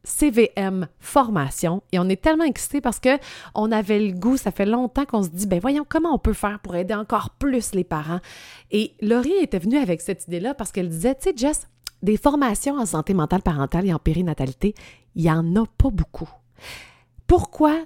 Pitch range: 175-225 Hz